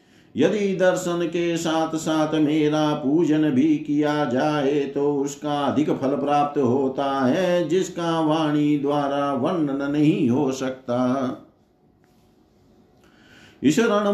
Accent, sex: native, male